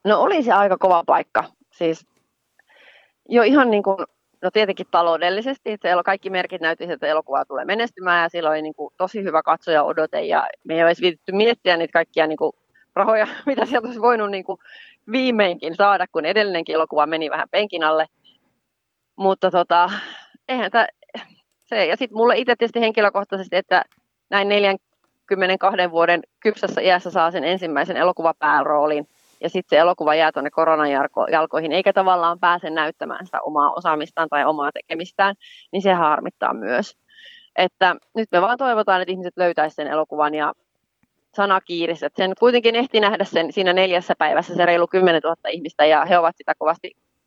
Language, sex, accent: Finnish, female, native